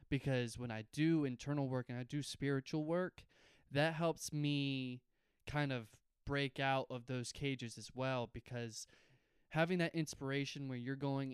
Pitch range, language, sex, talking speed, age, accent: 120-145 Hz, English, male, 160 wpm, 20-39, American